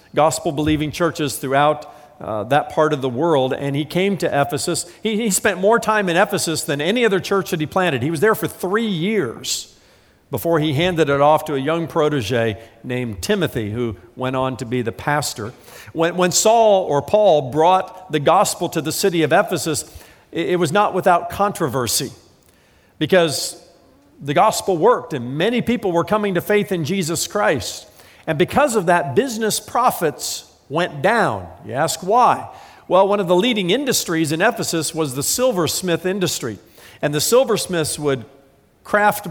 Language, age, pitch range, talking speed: English, 50-69, 135-185 Hz, 175 wpm